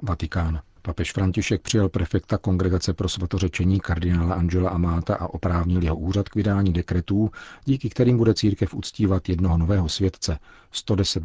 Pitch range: 85-100 Hz